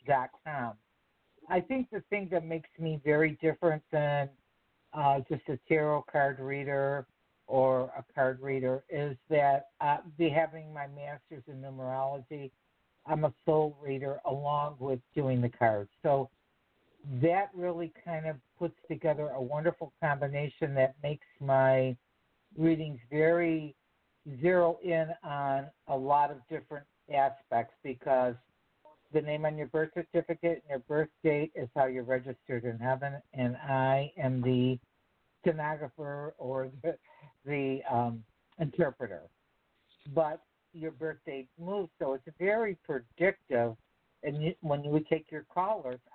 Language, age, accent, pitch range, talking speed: English, 60-79, American, 130-160 Hz, 135 wpm